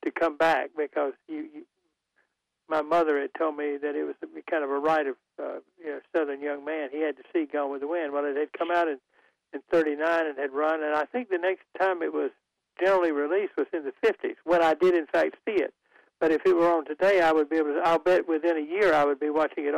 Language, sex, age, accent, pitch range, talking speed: English, male, 60-79, American, 150-185 Hz, 265 wpm